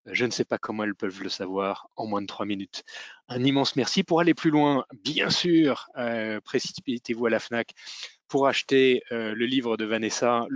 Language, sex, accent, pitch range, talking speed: French, male, French, 110-135 Hz, 205 wpm